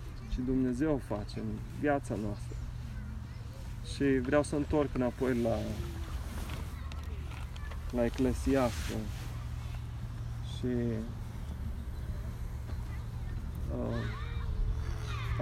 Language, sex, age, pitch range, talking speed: Romanian, male, 30-49, 95-125 Hz, 65 wpm